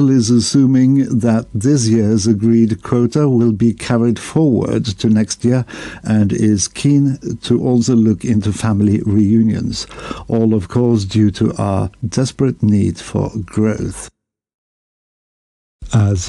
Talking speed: 125 wpm